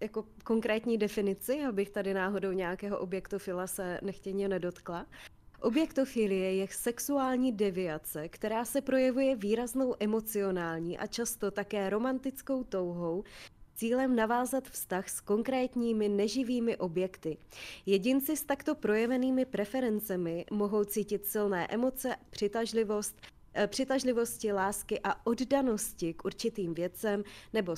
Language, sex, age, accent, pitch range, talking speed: Czech, female, 20-39, native, 195-230 Hz, 110 wpm